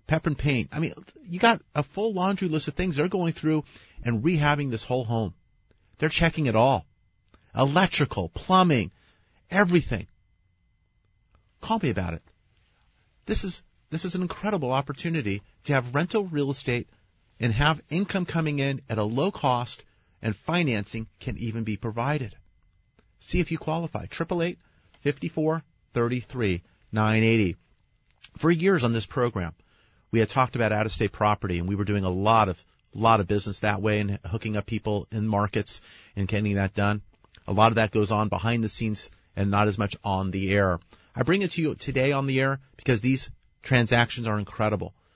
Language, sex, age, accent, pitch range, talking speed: English, male, 40-59, American, 105-145 Hz, 170 wpm